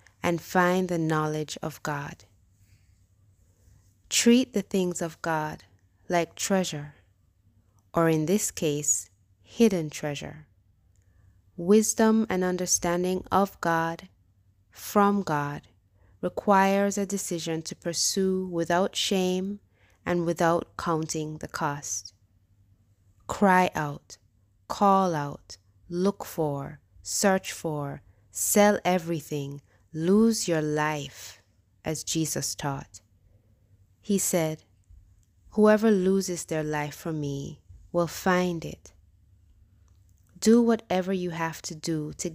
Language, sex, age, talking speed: English, female, 20-39, 100 wpm